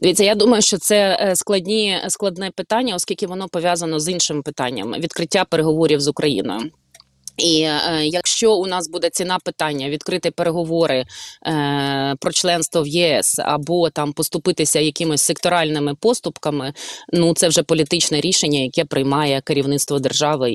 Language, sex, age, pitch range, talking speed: Ukrainian, female, 20-39, 145-175 Hz, 145 wpm